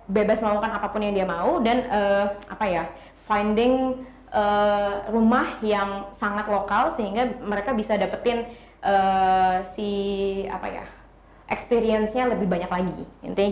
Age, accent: 20-39, native